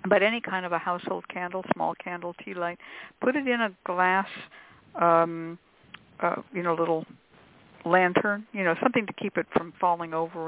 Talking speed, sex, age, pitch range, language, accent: 180 wpm, female, 60-79, 165-200 Hz, English, American